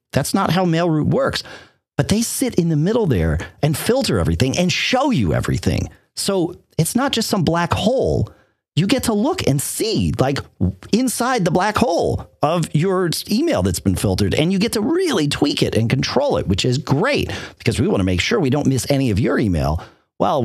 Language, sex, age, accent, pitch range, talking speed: English, male, 40-59, American, 115-180 Hz, 205 wpm